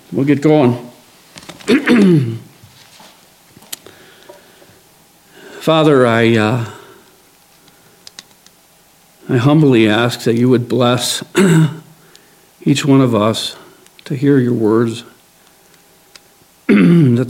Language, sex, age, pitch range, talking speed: English, male, 60-79, 120-140 Hz, 75 wpm